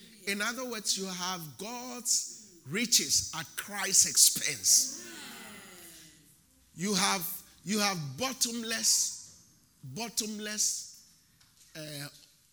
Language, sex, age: English, male, 50-69